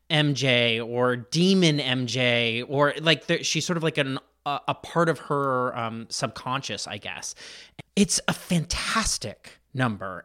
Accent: American